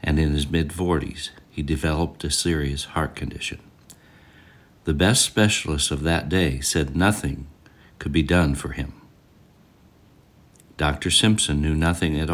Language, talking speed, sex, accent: English, 135 wpm, male, American